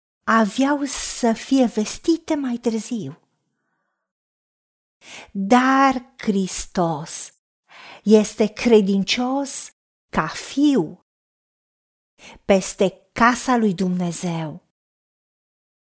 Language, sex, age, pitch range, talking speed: Romanian, female, 40-59, 190-260 Hz, 60 wpm